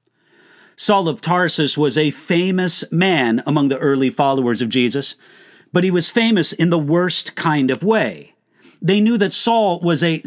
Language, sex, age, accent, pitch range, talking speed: English, male, 50-69, American, 155-210 Hz, 170 wpm